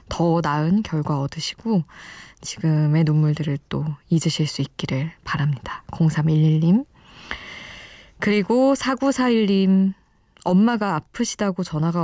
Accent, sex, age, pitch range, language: native, female, 20-39, 155-195 Hz, Korean